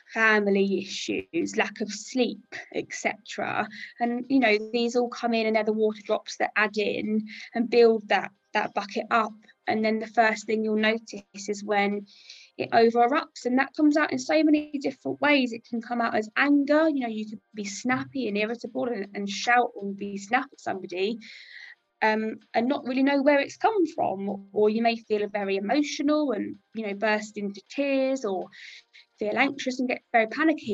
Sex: female